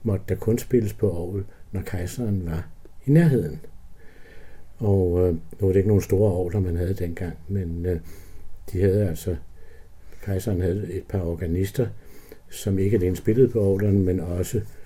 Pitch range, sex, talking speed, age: 85-105 Hz, male, 165 wpm, 60-79